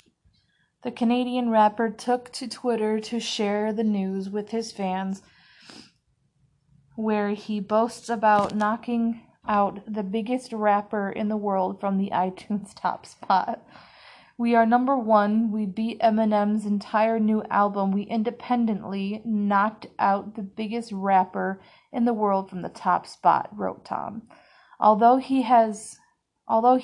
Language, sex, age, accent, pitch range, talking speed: English, female, 30-49, American, 195-230 Hz, 135 wpm